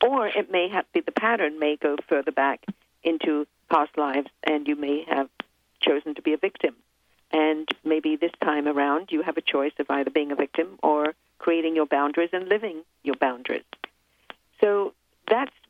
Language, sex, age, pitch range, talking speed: English, female, 50-69, 150-180 Hz, 185 wpm